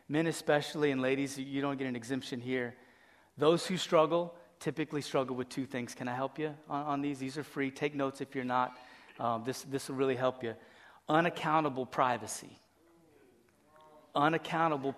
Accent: American